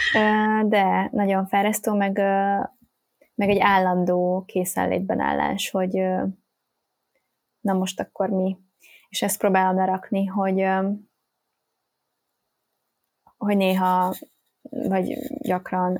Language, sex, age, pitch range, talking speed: Hungarian, female, 20-39, 190-235 Hz, 85 wpm